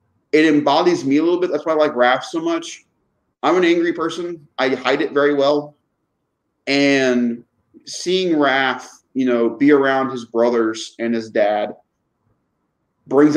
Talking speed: 155 wpm